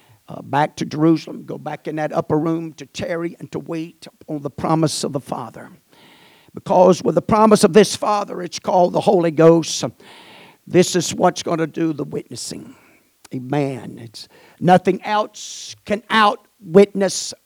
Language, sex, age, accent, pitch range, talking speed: English, male, 50-69, American, 165-195 Hz, 160 wpm